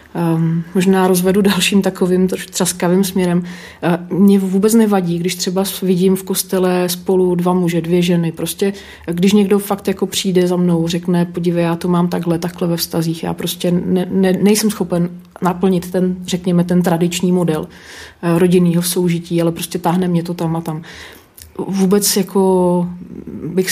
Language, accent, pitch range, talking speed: Czech, native, 175-190 Hz, 150 wpm